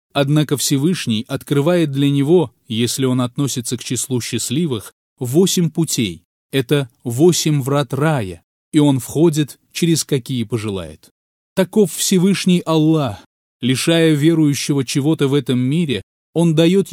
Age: 20-39